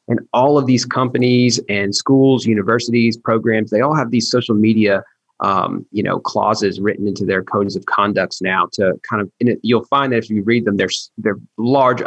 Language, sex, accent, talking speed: English, male, American, 205 wpm